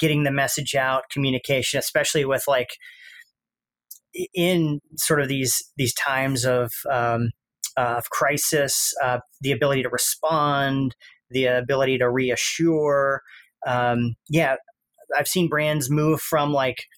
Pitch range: 125-150 Hz